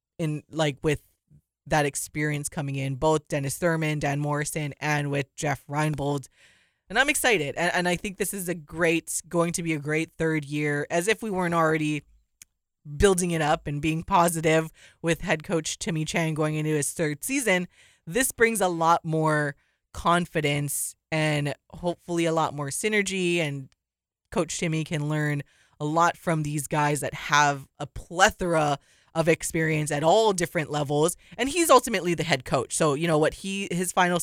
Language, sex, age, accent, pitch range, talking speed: English, female, 20-39, American, 150-175 Hz, 175 wpm